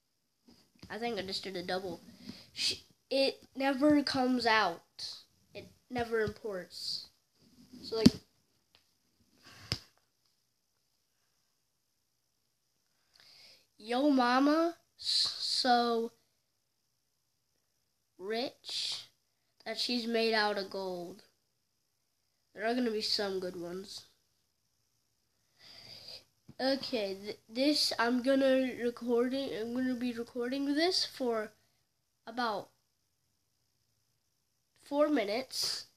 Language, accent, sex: English, American, female